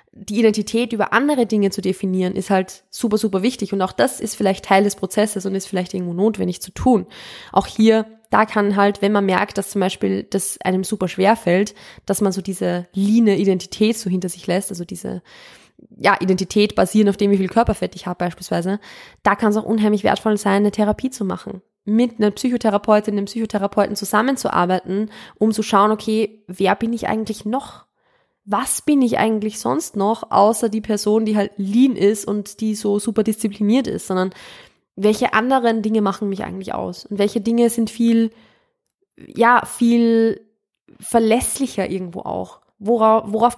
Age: 20-39